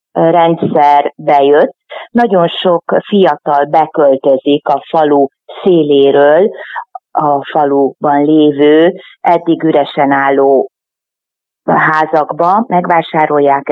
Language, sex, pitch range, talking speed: Hungarian, female, 145-190 Hz, 75 wpm